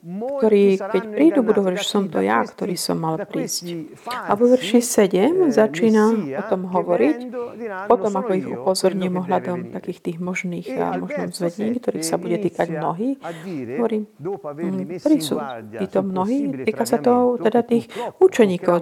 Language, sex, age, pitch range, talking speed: Slovak, female, 40-59, 185-245 Hz, 145 wpm